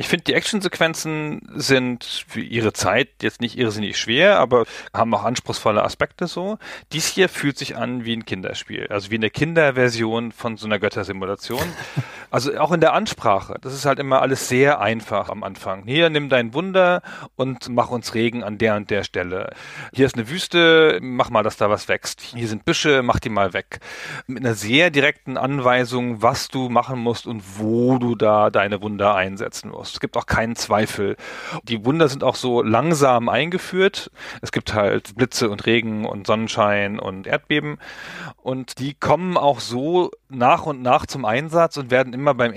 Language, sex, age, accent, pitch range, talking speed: German, male, 40-59, German, 110-145 Hz, 185 wpm